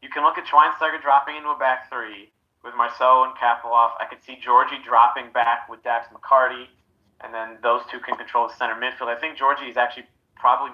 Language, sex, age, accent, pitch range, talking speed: English, male, 30-49, American, 115-130 Hz, 210 wpm